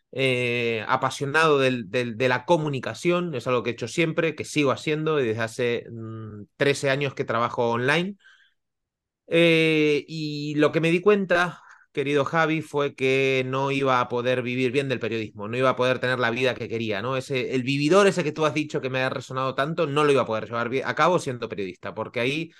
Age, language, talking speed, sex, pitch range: 30-49, Spanish, 205 wpm, male, 125-150 Hz